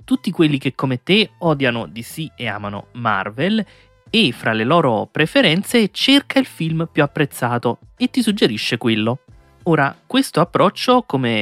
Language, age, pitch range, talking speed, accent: Italian, 30-49, 120-175 Hz, 145 wpm, native